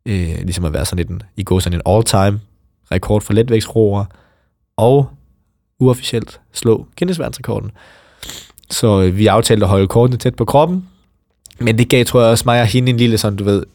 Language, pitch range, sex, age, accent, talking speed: Danish, 100-120 Hz, male, 20-39, native, 175 wpm